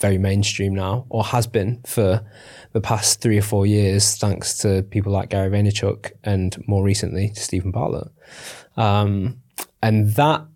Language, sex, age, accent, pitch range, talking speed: English, male, 20-39, British, 100-120 Hz, 155 wpm